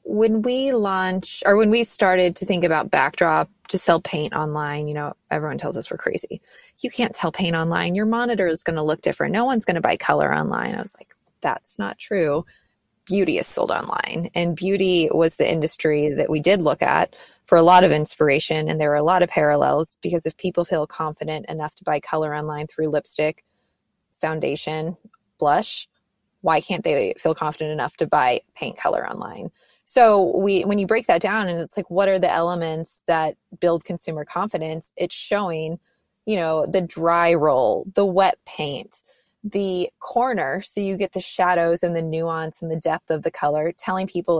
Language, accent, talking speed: English, American, 195 wpm